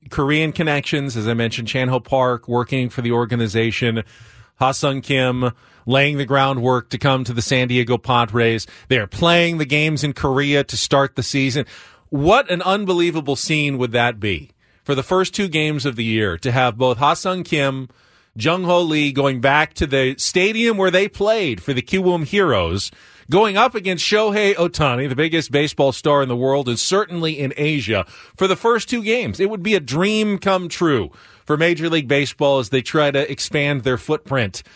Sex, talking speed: male, 190 wpm